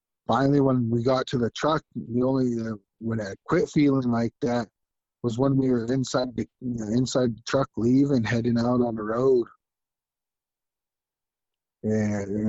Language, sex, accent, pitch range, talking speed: English, male, American, 115-130 Hz, 165 wpm